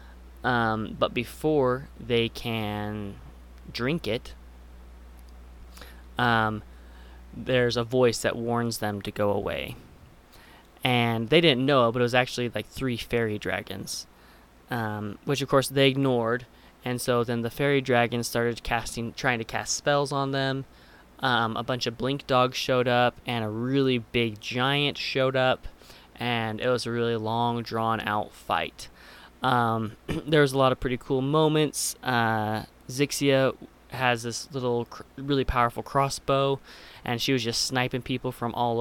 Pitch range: 110-130 Hz